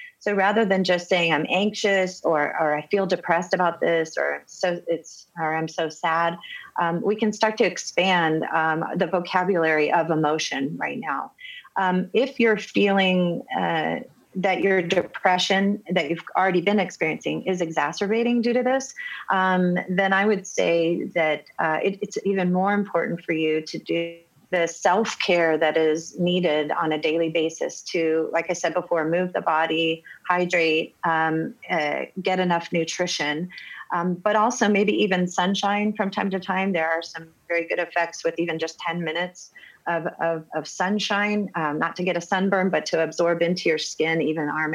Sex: female